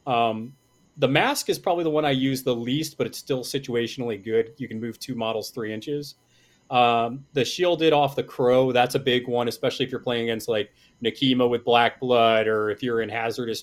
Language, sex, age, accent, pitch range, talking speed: English, male, 30-49, American, 115-140 Hz, 210 wpm